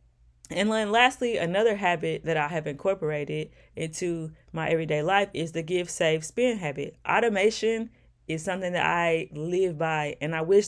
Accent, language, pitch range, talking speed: American, English, 155-185 Hz, 150 wpm